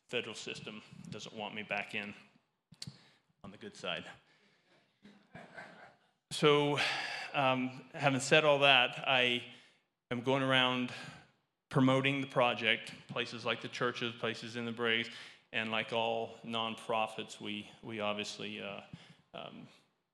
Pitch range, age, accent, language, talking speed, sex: 105-125 Hz, 30-49, American, English, 120 wpm, male